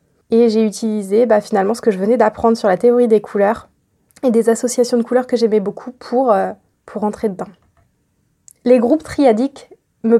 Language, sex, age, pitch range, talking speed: French, female, 20-39, 215-250 Hz, 190 wpm